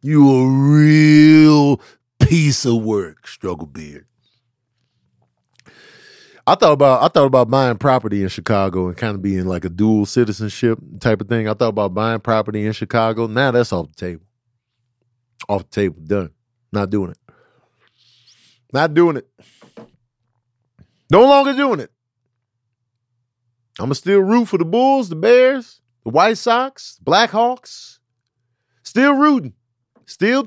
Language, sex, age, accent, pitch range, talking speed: English, male, 40-59, American, 115-150 Hz, 140 wpm